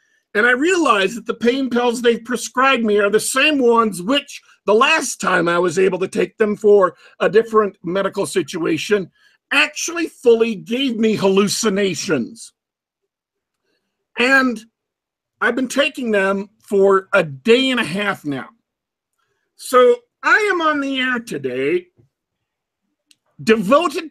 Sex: male